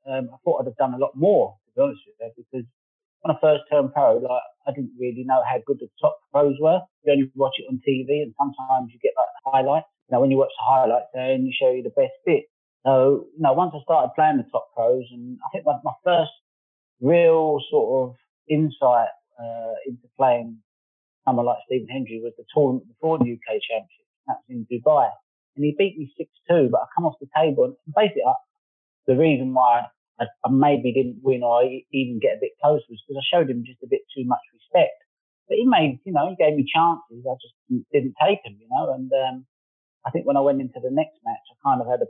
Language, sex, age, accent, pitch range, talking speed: English, male, 30-49, British, 125-180 Hz, 240 wpm